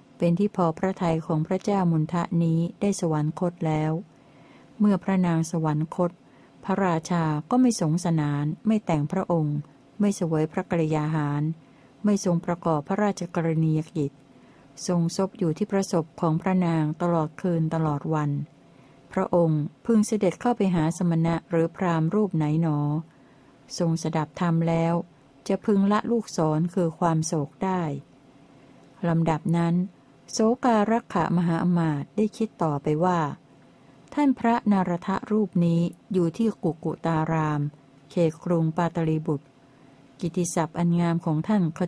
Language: Thai